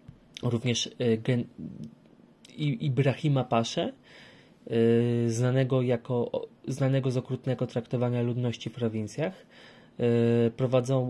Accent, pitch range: native, 115-135 Hz